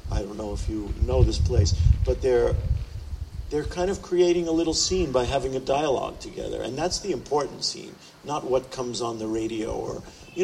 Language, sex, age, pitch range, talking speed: Italian, male, 50-69, 120-180 Hz, 200 wpm